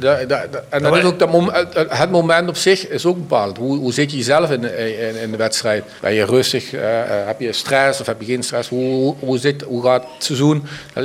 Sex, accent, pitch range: male, Dutch, 125-145 Hz